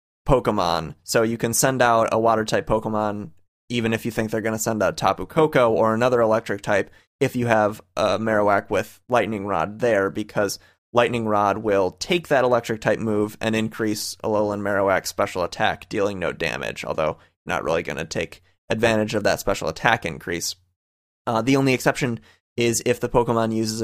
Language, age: English, 20-39